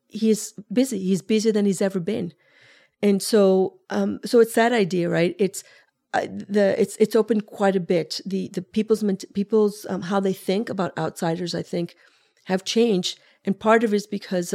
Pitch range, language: 180-215 Hz, English